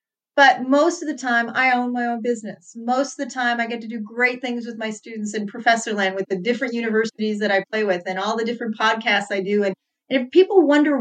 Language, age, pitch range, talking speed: English, 40-59, 225-285 Hz, 245 wpm